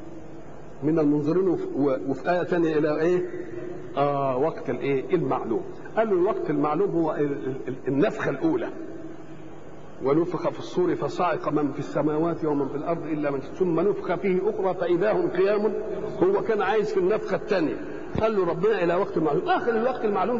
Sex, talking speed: male, 155 wpm